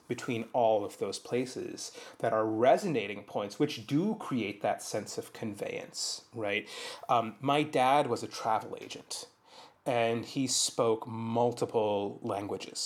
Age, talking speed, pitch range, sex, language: 30-49, 135 wpm, 115-155 Hz, male, English